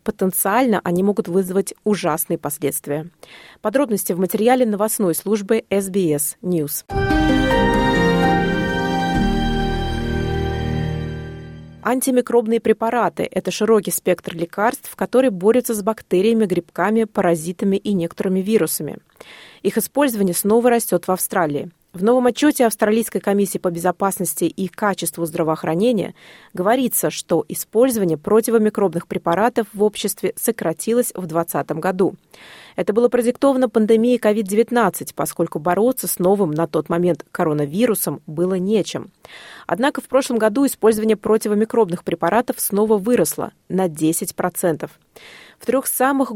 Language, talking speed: Russian, 110 wpm